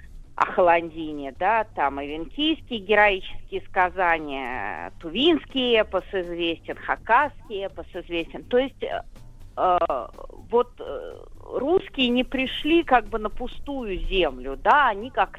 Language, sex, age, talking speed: Russian, female, 40-59, 115 wpm